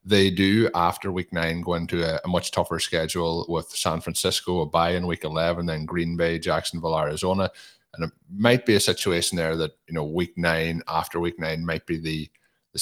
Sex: male